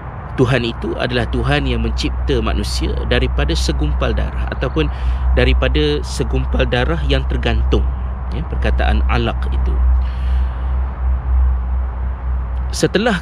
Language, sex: Malay, male